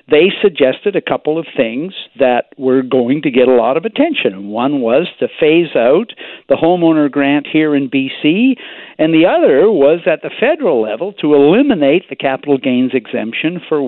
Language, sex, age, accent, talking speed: English, male, 50-69, American, 175 wpm